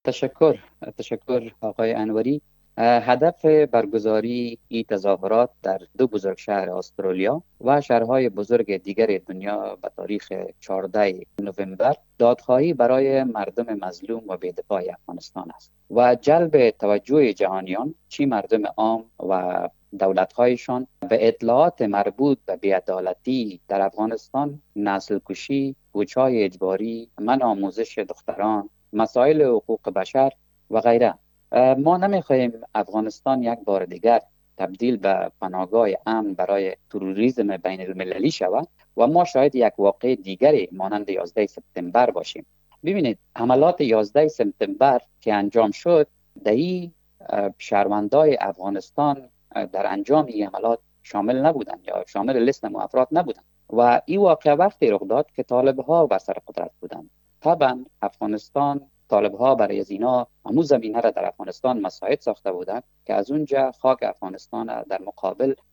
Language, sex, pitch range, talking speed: Persian, male, 105-140 Hz, 125 wpm